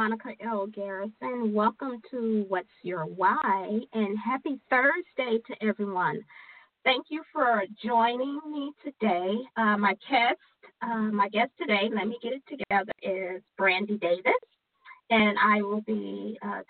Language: English